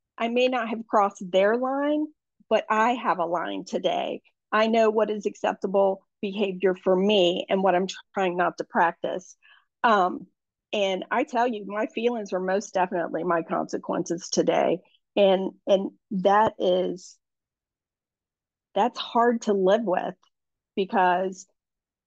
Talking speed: 140 wpm